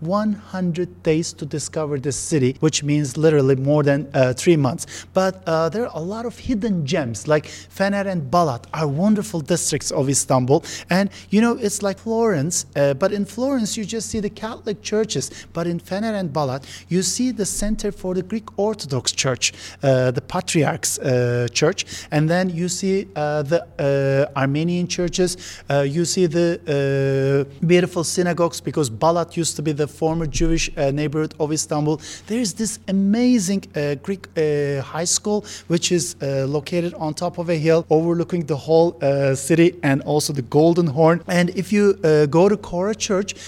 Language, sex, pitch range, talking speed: English, male, 145-190 Hz, 180 wpm